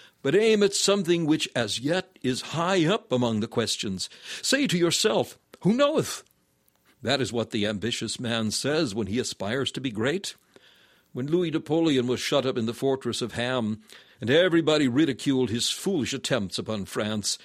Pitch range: 110-155 Hz